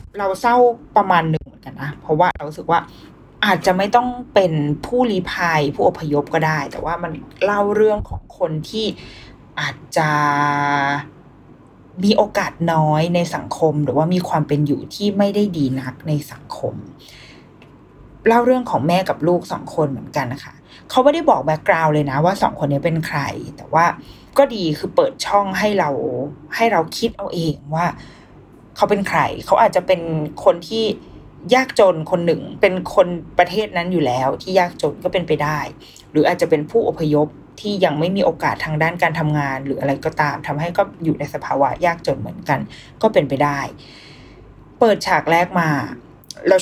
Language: Thai